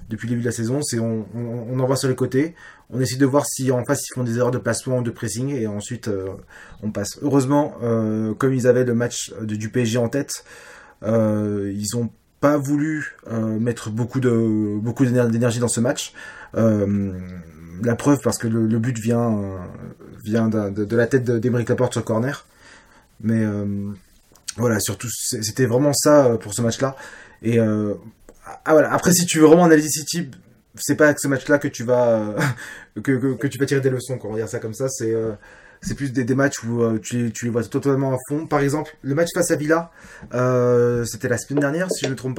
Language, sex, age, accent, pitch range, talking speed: French, male, 20-39, French, 115-140 Hz, 225 wpm